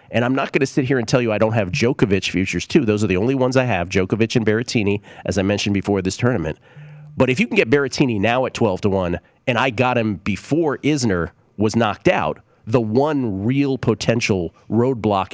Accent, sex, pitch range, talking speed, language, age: American, male, 95-125 Hz, 220 wpm, English, 40-59